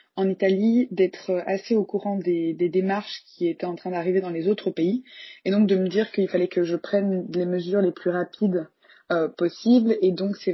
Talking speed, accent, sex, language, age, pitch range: 215 wpm, French, female, French, 20-39, 180-205 Hz